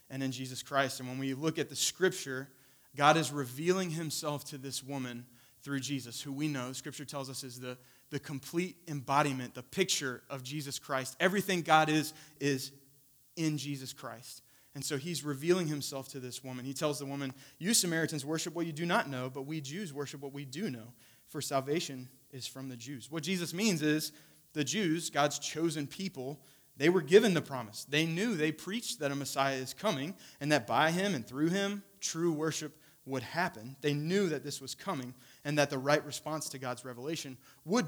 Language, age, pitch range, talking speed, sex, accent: English, 30-49, 130-155 Hz, 200 wpm, male, American